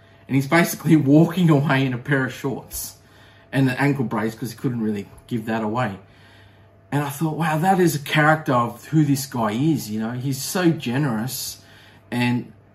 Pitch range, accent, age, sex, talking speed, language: 110-140 Hz, Australian, 30-49, male, 190 wpm, English